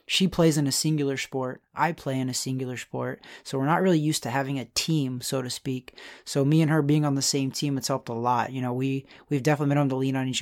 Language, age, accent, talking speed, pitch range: English, 30-49, American, 280 wpm, 135-155 Hz